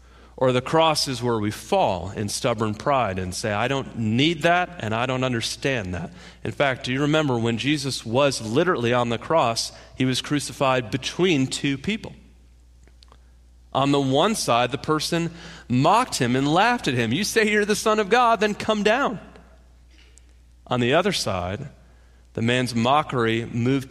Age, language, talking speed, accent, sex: 40-59, English, 175 wpm, American, male